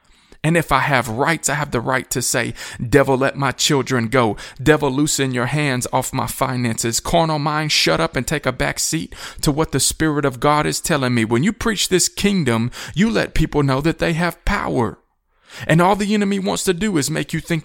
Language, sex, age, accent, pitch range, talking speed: English, male, 40-59, American, 130-165 Hz, 220 wpm